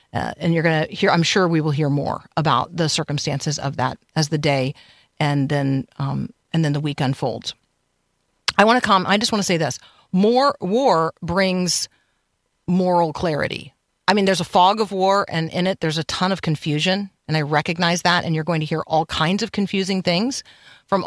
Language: English